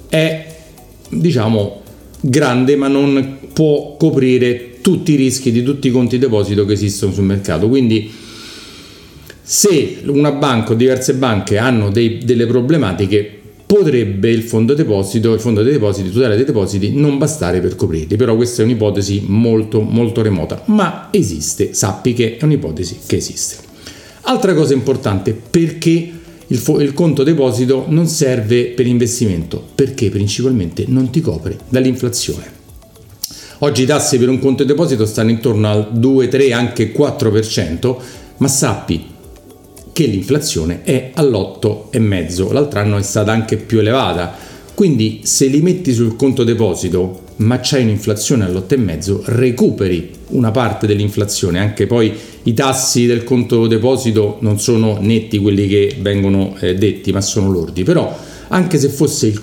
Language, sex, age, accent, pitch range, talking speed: Italian, male, 40-59, native, 105-140 Hz, 145 wpm